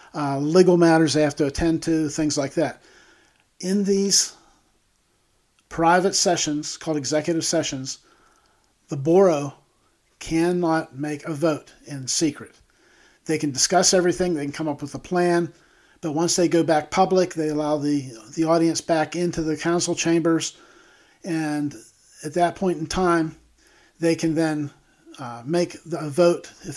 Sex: male